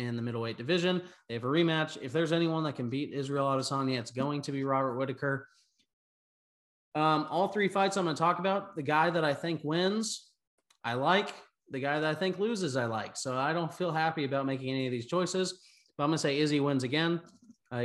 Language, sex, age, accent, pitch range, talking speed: English, male, 30-49, American, 125-160 Hz, 220 wpm